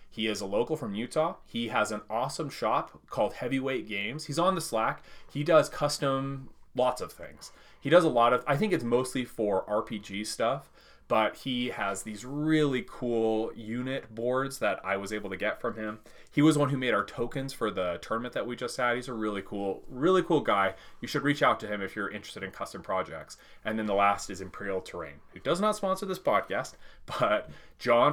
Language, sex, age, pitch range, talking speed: English, male, 30-49, 105-140 Hz, 215 wpm